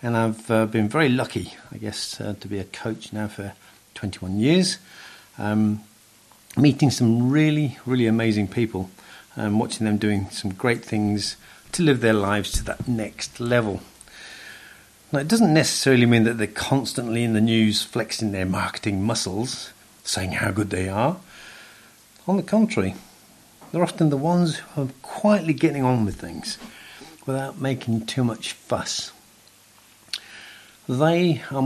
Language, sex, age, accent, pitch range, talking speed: English, male, 50-69, British, 105-150 Hz, 150 wpm